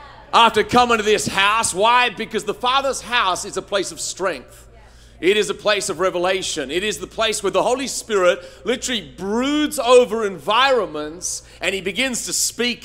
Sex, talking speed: male, 175 wpm